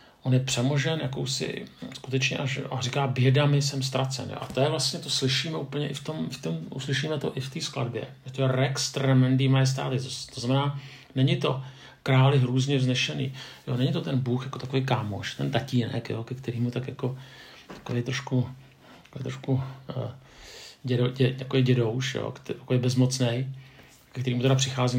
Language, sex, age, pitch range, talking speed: Czech, male, 50-69, 120-135 Hz, 170 wpm